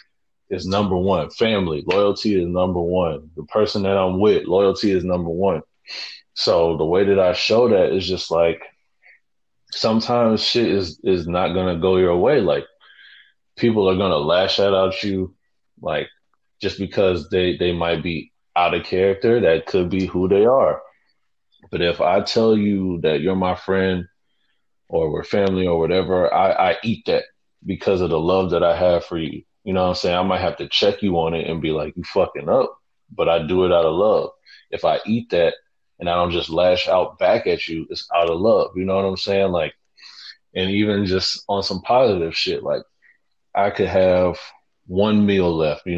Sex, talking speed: male, 200 wpm